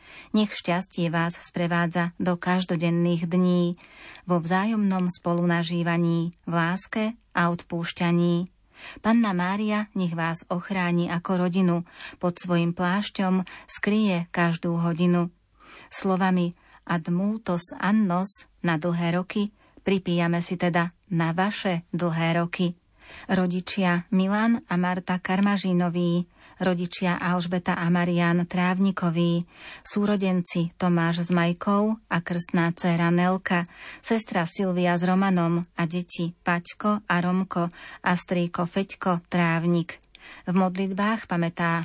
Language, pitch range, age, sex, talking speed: Slovak, 170-190 Hz, 30-49, female, 110 wpm